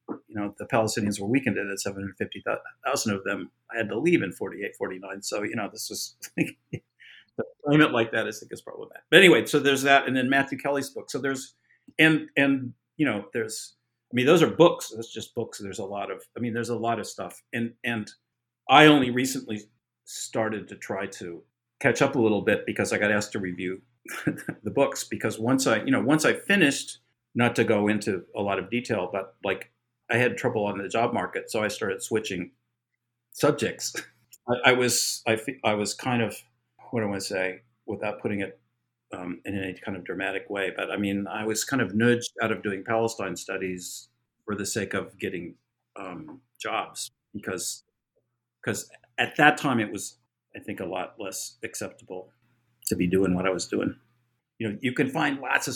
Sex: male